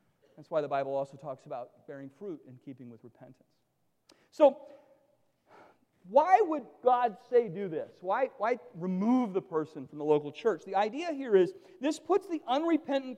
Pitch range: 195-275 Hz